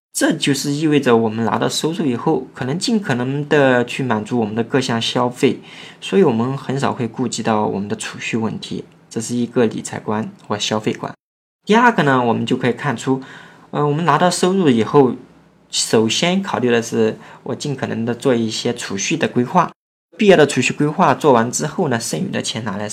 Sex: male